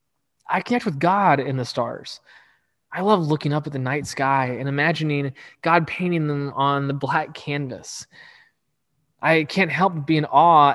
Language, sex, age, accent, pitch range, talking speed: English, male, 20-39, American, 140-170 Hz, 175 wpm